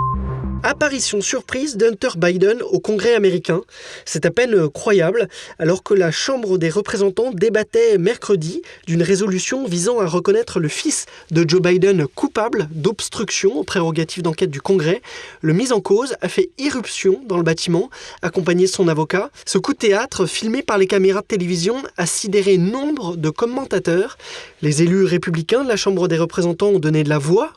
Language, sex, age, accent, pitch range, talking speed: French, male, 20-39, French, 170-225 Hz, 170 wpm